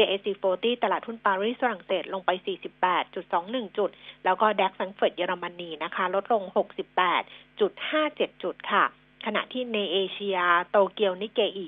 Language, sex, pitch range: Thai, female, 185-235 Hz